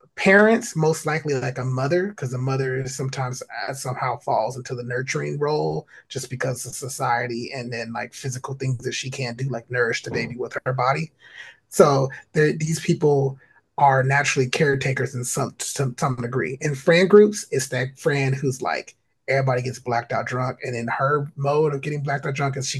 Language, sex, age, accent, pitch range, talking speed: English, male, 30-49, American, 130-175 Hz, 190 wpm